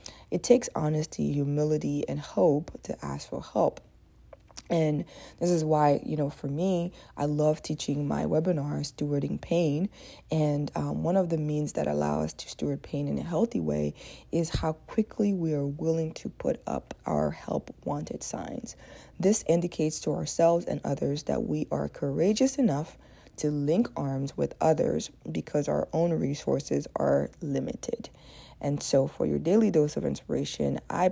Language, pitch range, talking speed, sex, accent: English, 135-165 Hz, 165 wpm, female, American